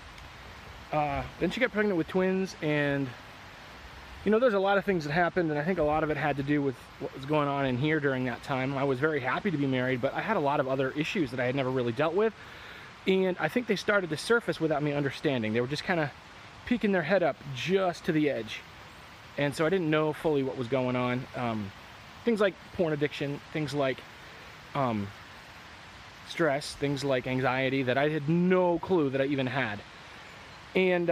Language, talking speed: English, 220 wpm